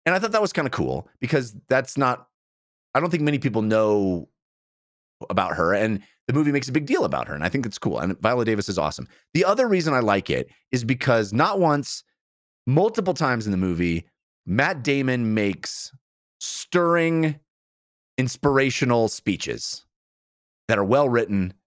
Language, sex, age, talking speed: English, male, 30-49, 170 wpm